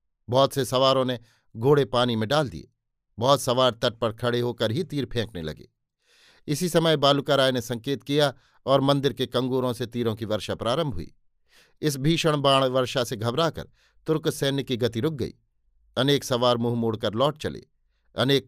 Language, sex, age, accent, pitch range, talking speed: Hindi, male, 50-69, native, 120-140 Hz, 180 wpm